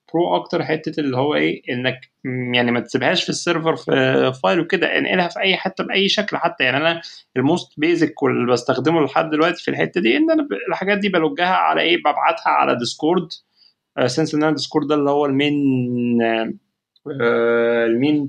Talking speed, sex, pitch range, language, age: 175 wpm, male, 130-175 Hz, Arabic, 20-39